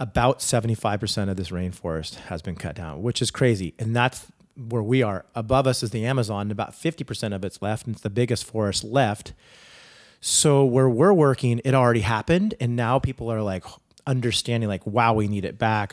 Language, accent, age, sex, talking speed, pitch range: English, American, 30-49, male, 200 wpm, 105-120 Hz